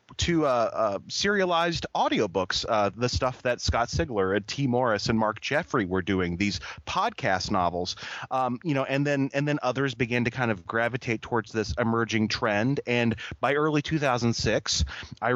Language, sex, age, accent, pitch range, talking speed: English, male, 30-49, American, 110-135 Hz, 170 wpm